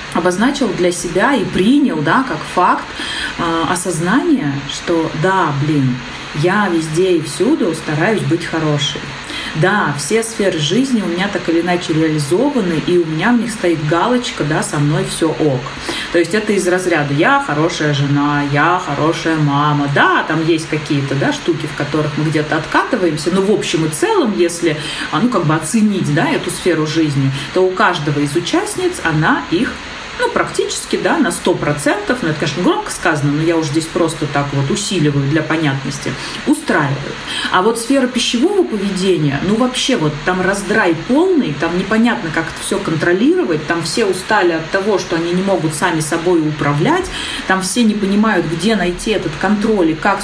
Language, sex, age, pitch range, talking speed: Russian, female, 30-49, 155-210 Hz, 175 wpm